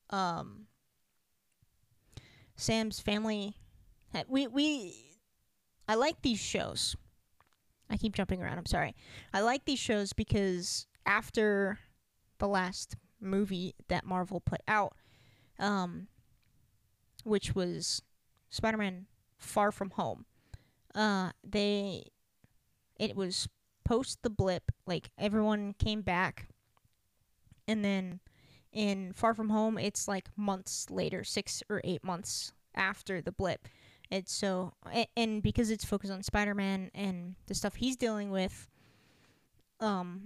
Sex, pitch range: female, 170-215 Hz